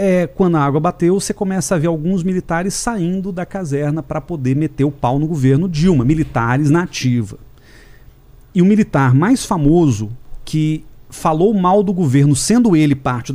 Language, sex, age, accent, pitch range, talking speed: Portuguese, male, 40-59, Brazilian, 130-180 Hz, 165 wpm